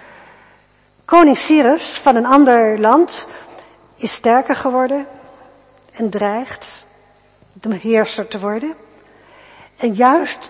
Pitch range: 210-290 Hz